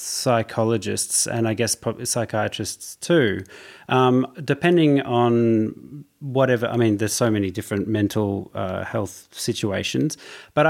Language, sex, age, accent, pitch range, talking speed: English, male, 30-49, Australian, 100-125 Hz, 125 wpm